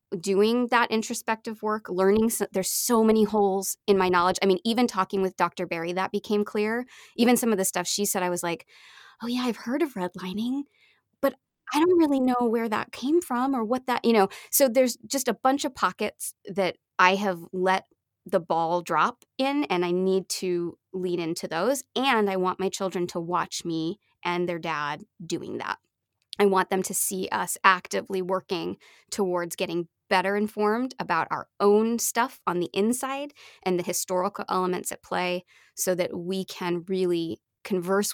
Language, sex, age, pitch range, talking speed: English, female, 20-39, 180-220 Hz, 185 wpm